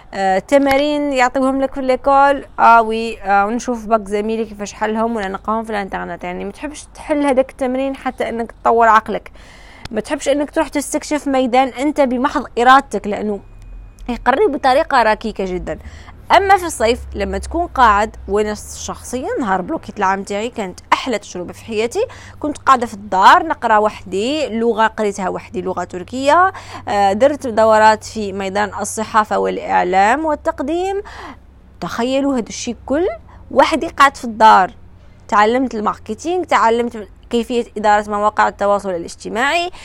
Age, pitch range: 20-39, 205-275 Hz